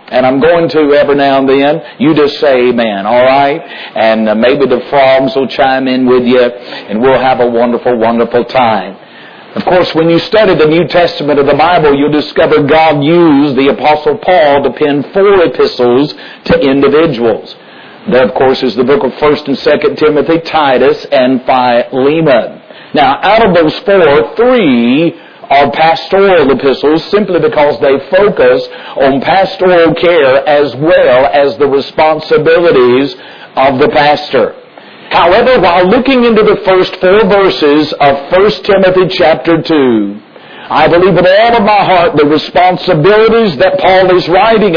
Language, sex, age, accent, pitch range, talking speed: English, male, 50-69, American, 140-185 Hz, 160 wpm